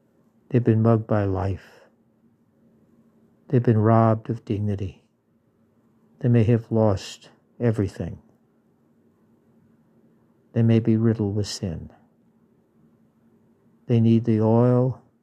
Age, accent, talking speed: 60-79, American, 100 wpm